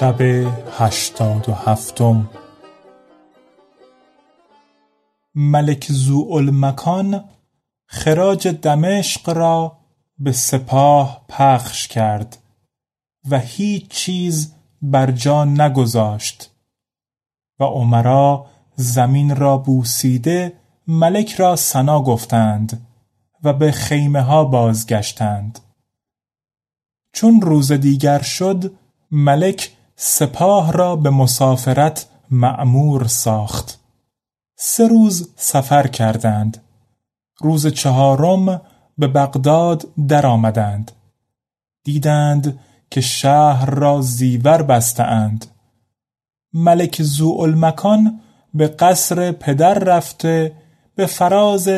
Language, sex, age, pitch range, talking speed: Persian, male, 30-49, 120-160 Hz, 80 wpm